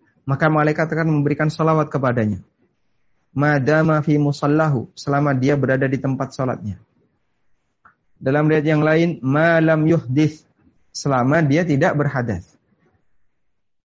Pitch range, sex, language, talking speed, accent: 130-155 Hz, male, Indonesian, 110 wpm, native